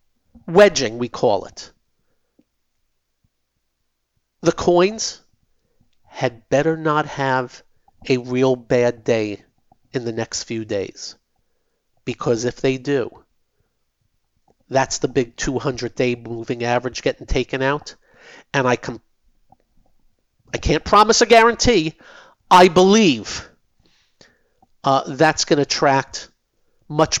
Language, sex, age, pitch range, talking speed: English, male, 50-69, 125-160 Hz, 105 wpm